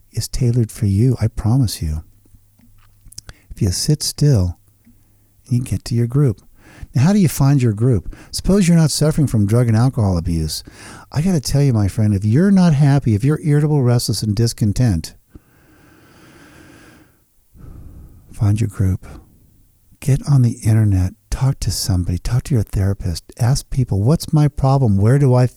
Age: 50-69